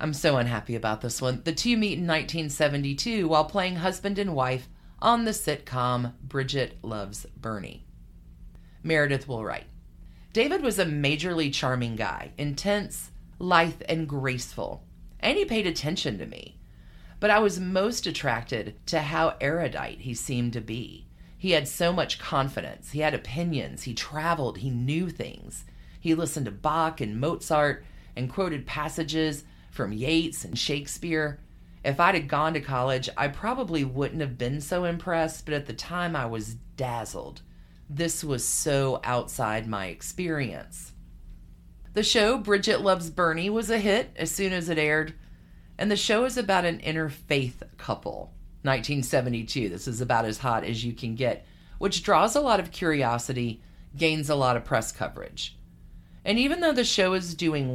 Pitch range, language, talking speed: 120-170 Hz, English, 160 wpm